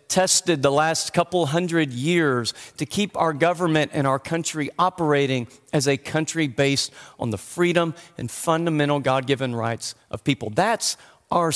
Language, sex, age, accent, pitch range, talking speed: English, male, 40-59, American, 140-175 Hz, 150 wpm